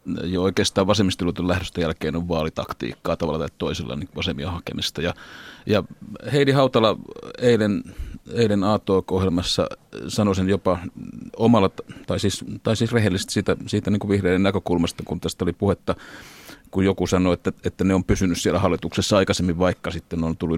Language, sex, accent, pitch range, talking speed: Finnish, male, native, 90-110 Hz, 150 wpm